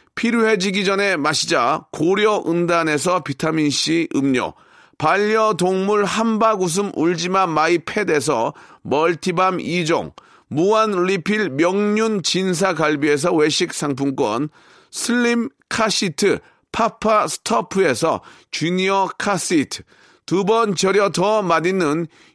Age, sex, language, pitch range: 40-59, male, Korean, 170-215 Hz